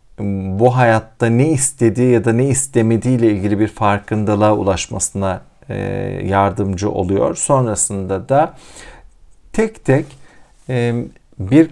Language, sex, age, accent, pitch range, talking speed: Turkish, male, 50-69, native, 100-130 Hz, 100 wpm